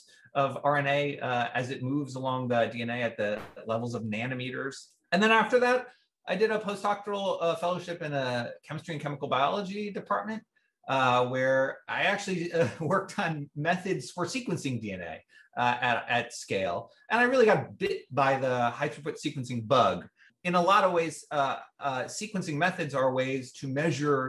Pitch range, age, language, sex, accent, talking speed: 130-185 Hz, 30-49, English, male, American, 170 wpm